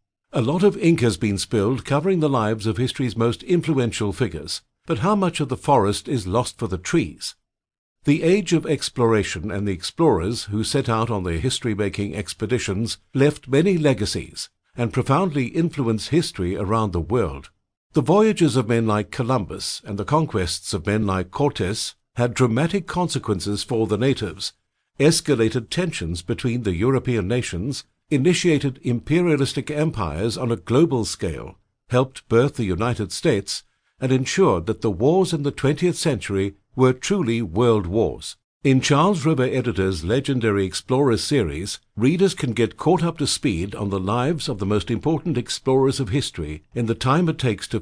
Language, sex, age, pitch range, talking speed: English, male, 60-79, 105-145 Hz, 165 wpm